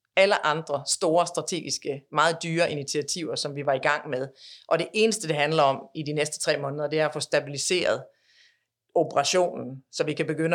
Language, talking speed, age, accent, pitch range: Danish, 195 wpm, 40-59, native, 150-180 Hz